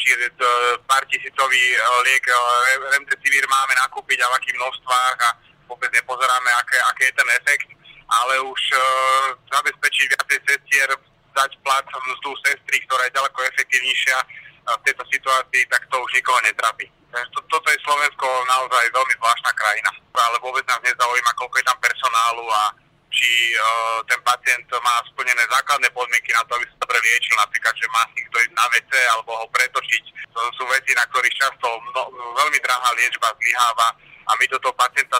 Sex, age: male, 30-49